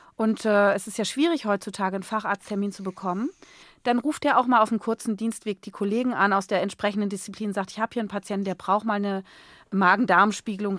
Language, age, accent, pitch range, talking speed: German, 30-49, German, 205-240 Hz, 215 wpm